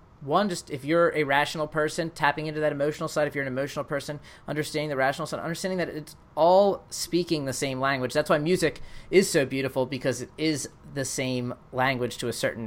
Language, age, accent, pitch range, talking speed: English, 30-49, American, 130-160 Hz, 210 wpm